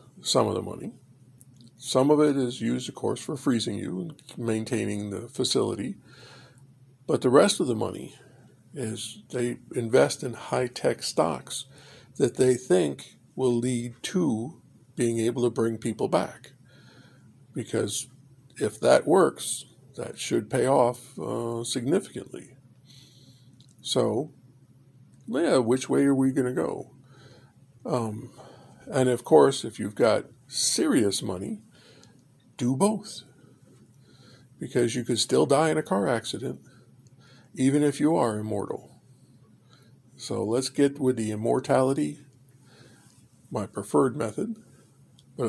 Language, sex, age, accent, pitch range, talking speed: English, male, 50-69, American, 120-135 Hz, 125 wpm